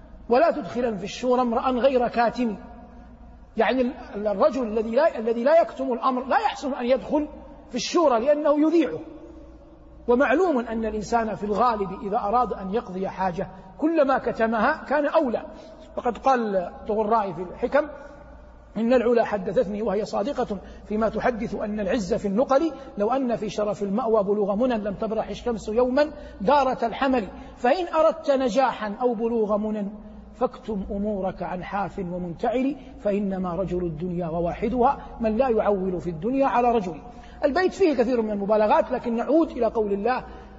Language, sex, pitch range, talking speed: Arabic, male, 195-255 Hz, 145 wpm